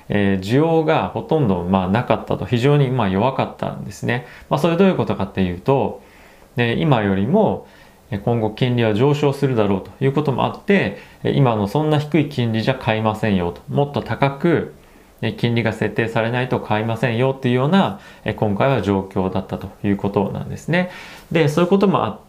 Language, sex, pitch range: Japanese, male, 100-135 Hz